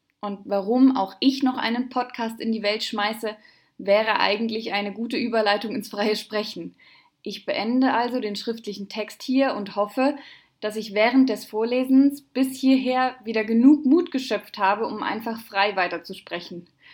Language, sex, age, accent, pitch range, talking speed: German, female, 20-39, German, 190-250 Hz, 155 wpm